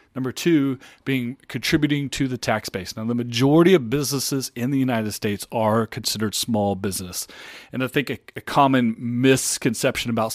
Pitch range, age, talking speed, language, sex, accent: 115-140 Hz, 30-49, 170 wpm, English, male, American